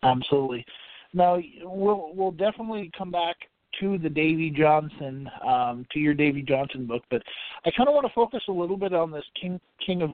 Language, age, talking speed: English, 40-59, 190 wpm